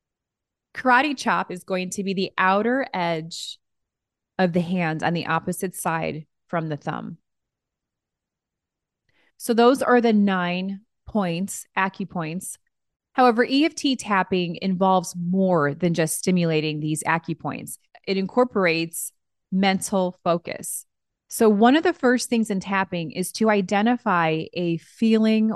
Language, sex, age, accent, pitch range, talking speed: English, female, 30-49, American, 165-205 Hz, 125 wpm